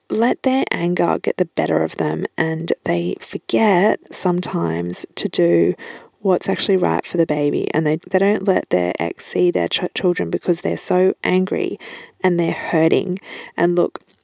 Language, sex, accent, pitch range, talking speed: English, female, Australian, 165-215 Hz, 165 wpm